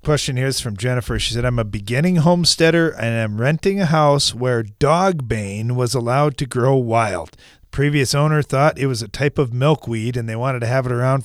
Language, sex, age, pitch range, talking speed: English, male, 40-59, 120-155 Hz, 215 wpm